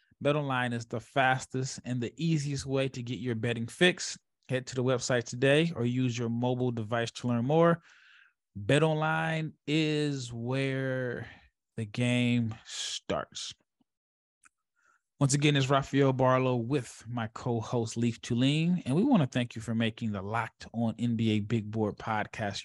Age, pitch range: 20-39, 115-145 Hz